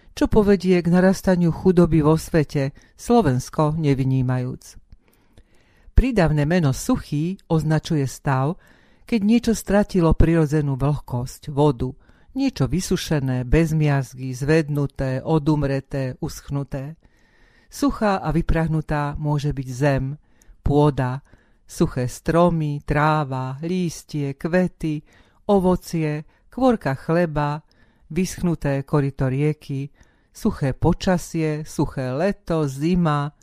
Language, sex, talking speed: Slovak, female, 90 wpm